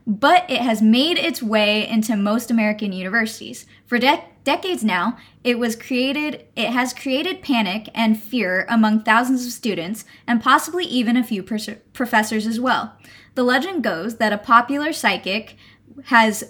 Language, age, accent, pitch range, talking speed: English, 20-39, American, 215-270 Hz, 160 wpm